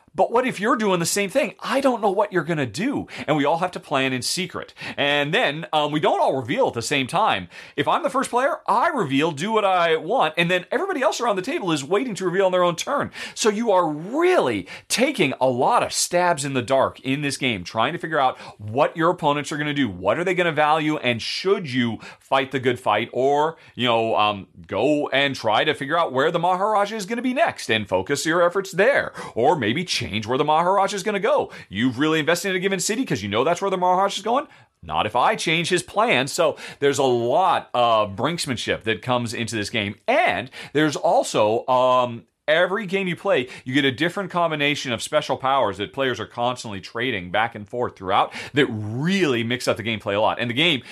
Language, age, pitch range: English, 30-49, 120-180 Hz